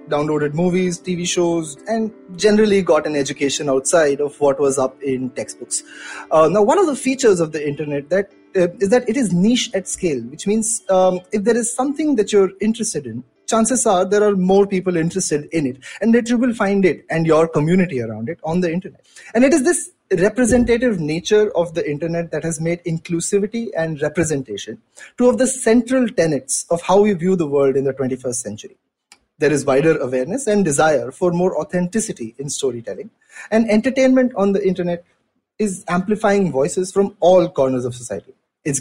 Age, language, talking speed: 30-49, English, 190 wpm